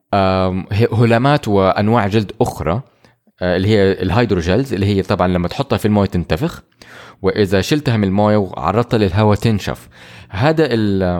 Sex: male